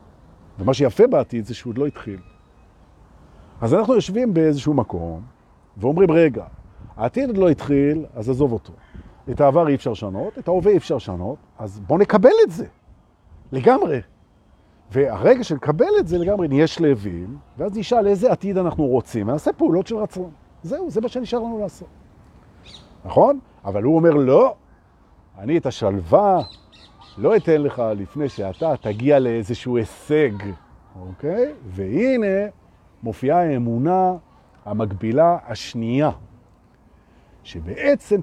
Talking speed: 105 wpm